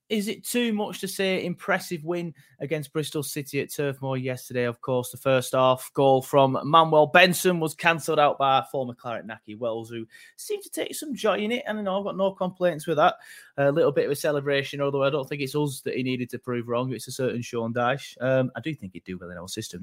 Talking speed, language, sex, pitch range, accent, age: 240 wpm, English, male, 125-165 Hz, British, 20-39